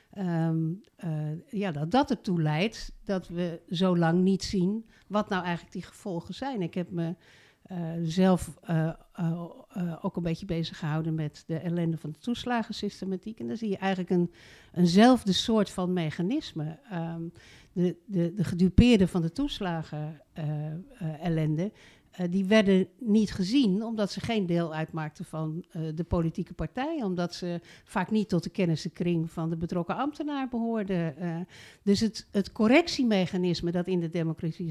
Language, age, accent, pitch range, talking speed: Dutch, 60-79, Dutch, 165-205 Hz, 165 wpm